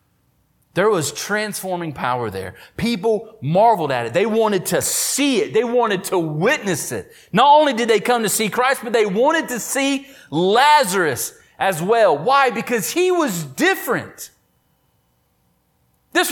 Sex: male